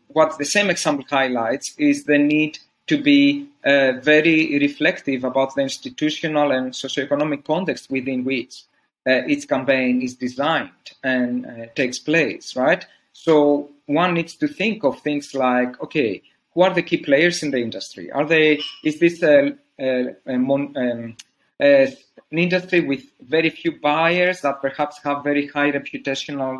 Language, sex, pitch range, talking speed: English, male, 135-165 Hz, 160 wpm